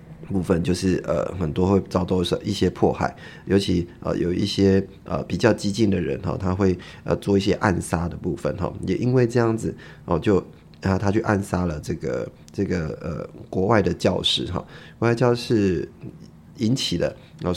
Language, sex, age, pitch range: Chinese, male, 20-39, 90-105 Hz